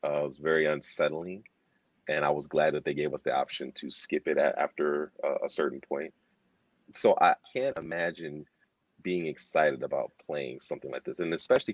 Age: 30-49